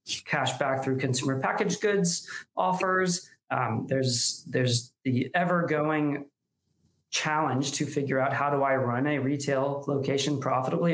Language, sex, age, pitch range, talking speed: English, male, 20-39, 130-160 Hz, 135 wpm